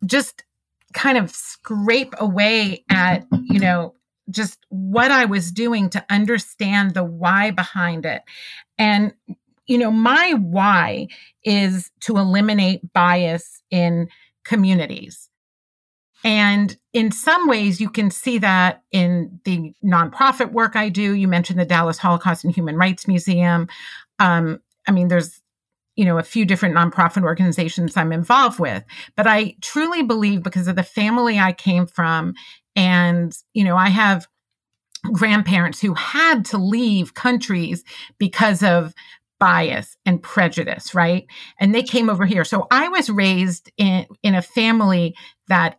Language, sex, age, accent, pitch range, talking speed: English, female, 40-59, American, 175-220 Hz, 145 wpm